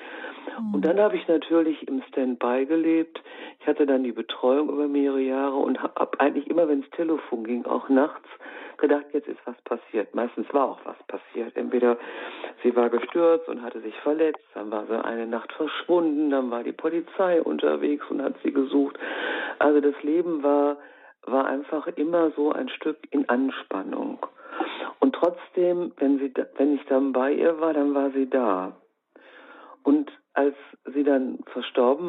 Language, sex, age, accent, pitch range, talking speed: German, female, 50-69, German, 125-160 Hz, 170 wpm